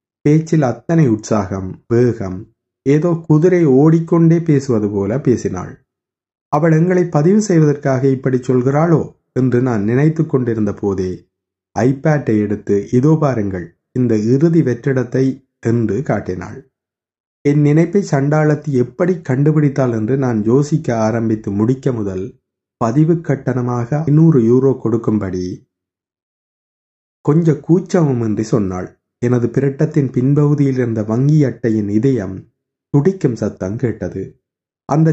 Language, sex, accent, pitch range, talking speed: Tamil, male, native, 110-155 Hz, 105 wpm